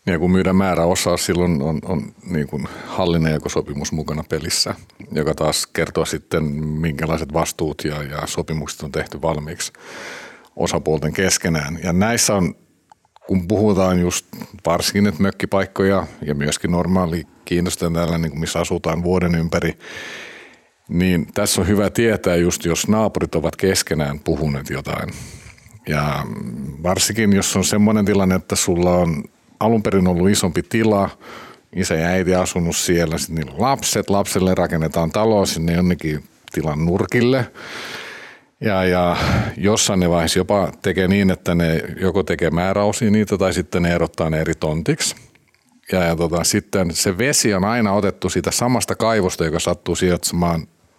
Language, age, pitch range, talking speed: Finnish, 50-69, 80-100 Hz, 140 wpm